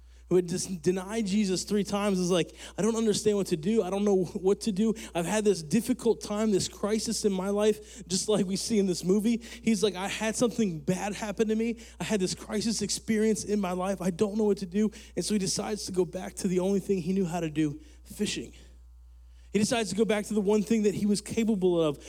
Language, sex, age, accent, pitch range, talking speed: English, male, 20-39, American, 180-215 Hz, 250 wpm